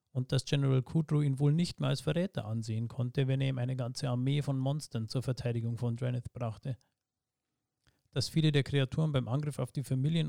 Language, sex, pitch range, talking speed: German, male, 120-145 Hz, 200 wpm